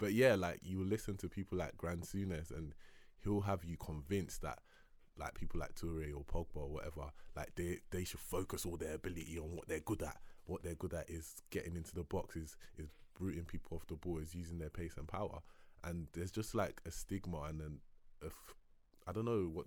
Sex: male